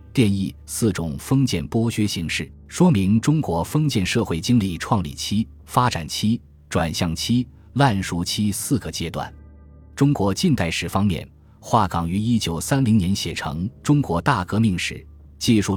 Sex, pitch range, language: male, 85-115 Hz, Chinese